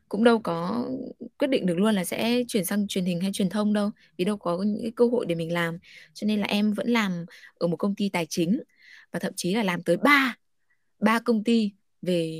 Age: 20-39